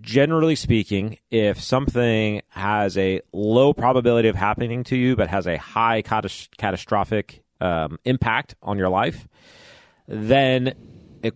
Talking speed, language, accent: 125 wpm, English, American